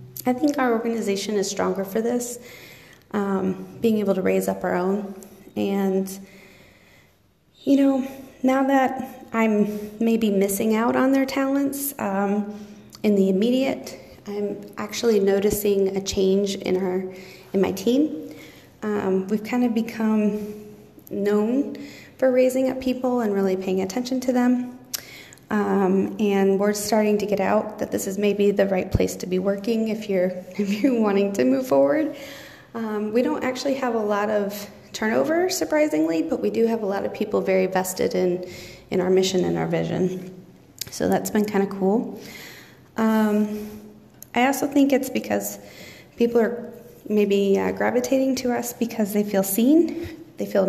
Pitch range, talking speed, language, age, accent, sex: 190-235 Hz, 160 wpm, English, 30-49, American, female